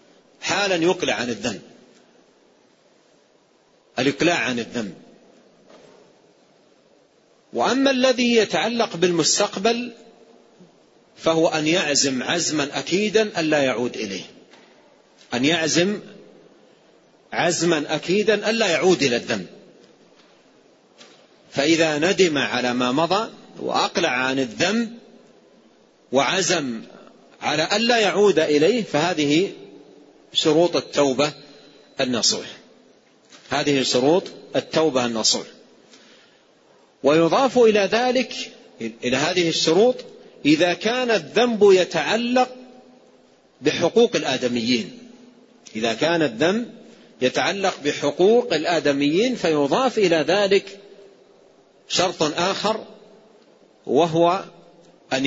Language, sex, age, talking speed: Arabic, male, 40-59, 80 wpm